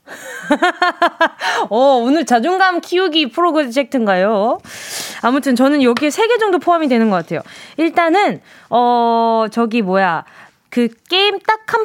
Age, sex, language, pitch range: 20-39, female, Korean, 235-340 Hz